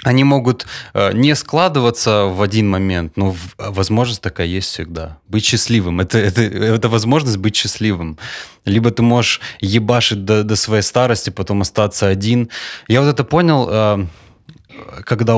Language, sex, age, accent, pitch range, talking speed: Russian, male, 20-39, native, 95-115 Hz, 140 wpm